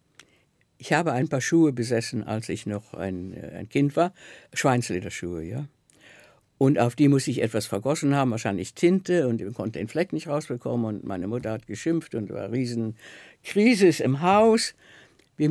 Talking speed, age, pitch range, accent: 170 wpm, 60-79, 110-145 Hz, German